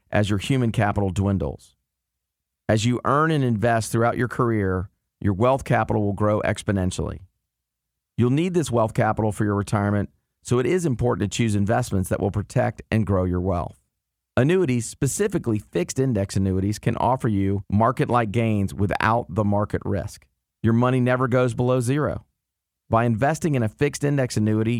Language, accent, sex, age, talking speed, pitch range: English, American, male, 40-59, 165 wpm, 100-125 Hz